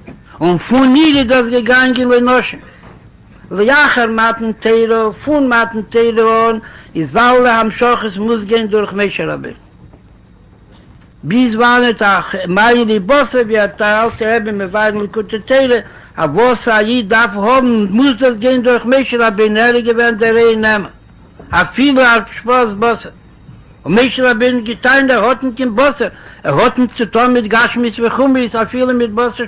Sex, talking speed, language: male, 45 wpm, Hebrew